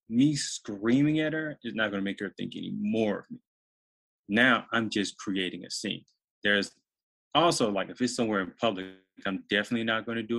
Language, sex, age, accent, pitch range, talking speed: English, male, 20-39, American, 95-120 Hz, 195 wpm